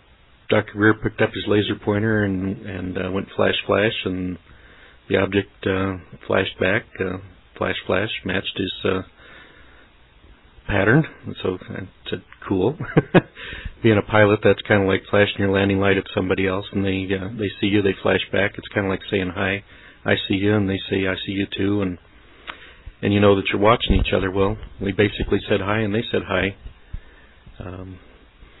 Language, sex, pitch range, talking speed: English, male, 95-105 Hz, 185 wpm